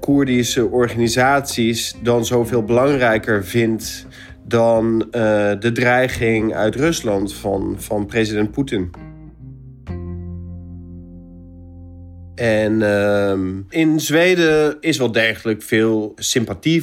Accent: Dutch